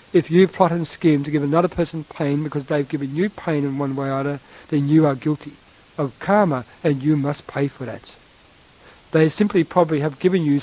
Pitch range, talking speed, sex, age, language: 140-165 Hz, 215 wpm, male, 60-79, English